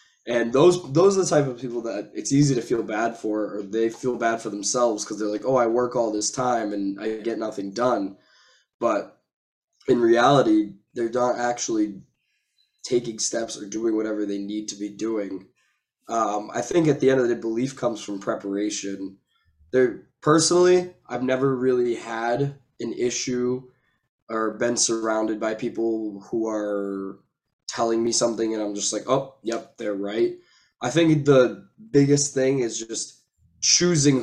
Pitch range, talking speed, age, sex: 105-130 Hz, 170 wpm, 20-39, male